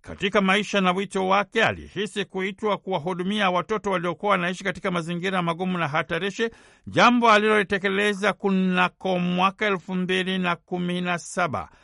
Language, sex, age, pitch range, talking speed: Swahili, male, 60-79, 180-205 Hz, 115 wpm